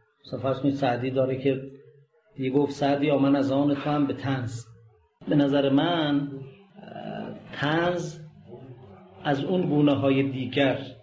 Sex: male